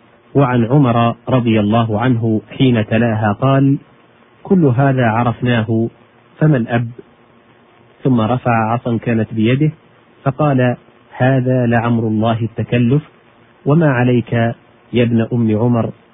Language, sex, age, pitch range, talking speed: Arabic, male, 40-59, 110-125 Hz, 110 wpm